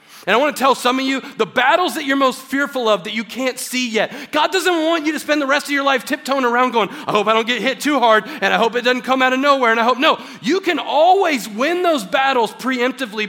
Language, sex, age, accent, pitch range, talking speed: English, male, 40-59, American, 195-265 Hz, 280 wpm